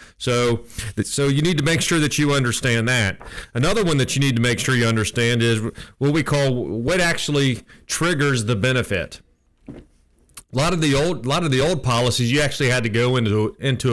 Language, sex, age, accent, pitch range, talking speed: English, male, 40-59, American, 115-140 Hz, 205 wpm